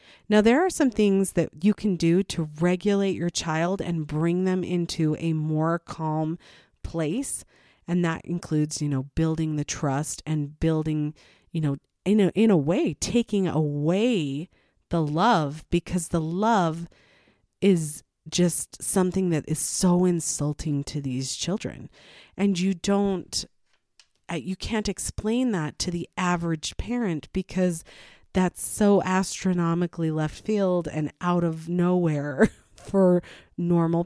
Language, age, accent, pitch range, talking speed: English, 40-59, American, 155-190 Hz, 135 wpm